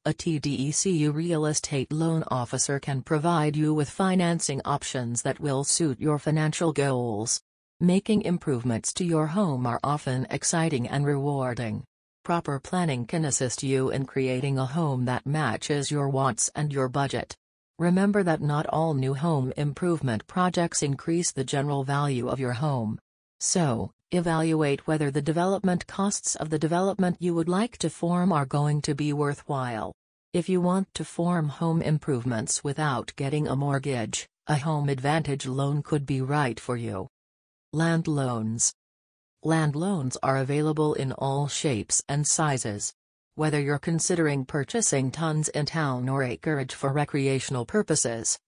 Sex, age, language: female, 40-59, English